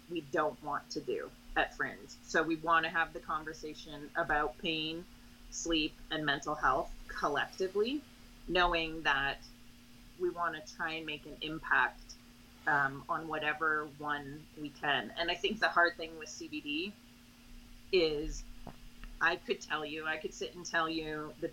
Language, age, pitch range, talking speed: English, 30-49, 145-170 Hz, 160 wpm